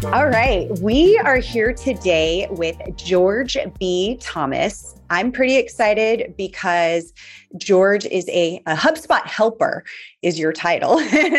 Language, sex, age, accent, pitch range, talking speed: English, female, 30-49, American, 160-205 Hz, 125 wpm